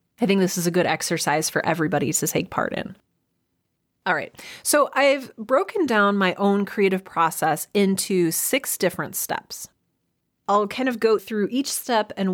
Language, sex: English, female